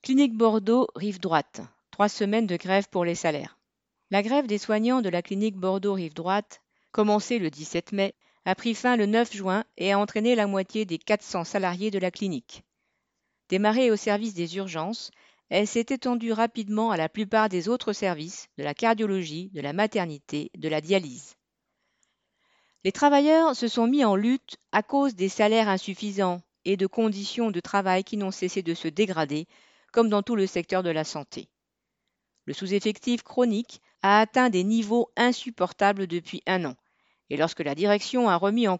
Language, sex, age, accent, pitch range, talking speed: French, female, 40-59, French, 180-230 Hz, 170 wpm